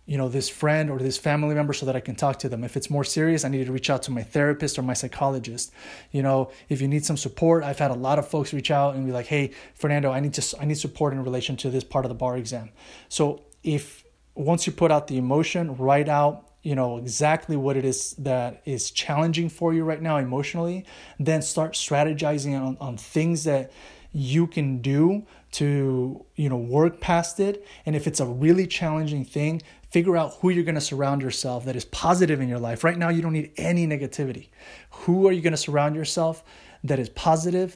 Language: English